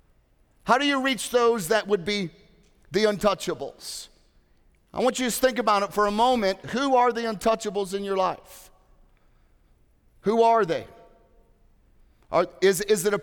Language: English